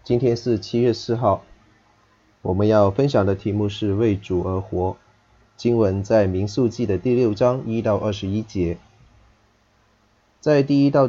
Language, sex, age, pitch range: Chinese, male, 30-49, 100-120 Hz